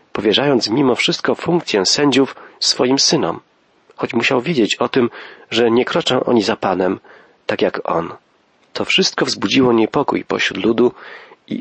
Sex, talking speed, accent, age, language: male, 145 wpm, native, 40-59, Polish